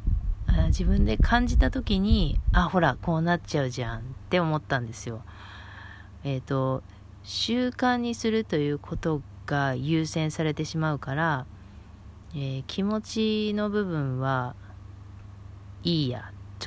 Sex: female